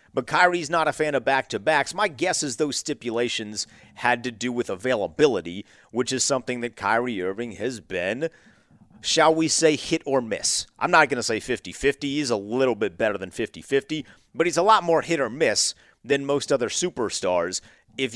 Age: 40-59